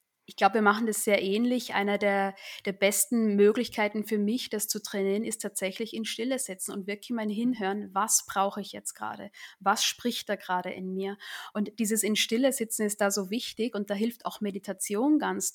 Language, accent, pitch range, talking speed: German, German, 195-220 Hz, 200 wpm